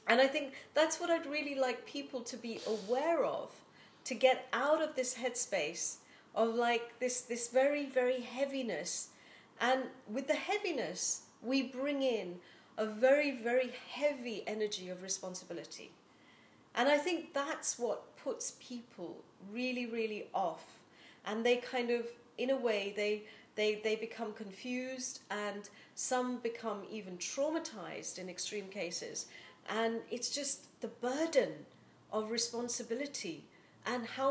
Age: 40-59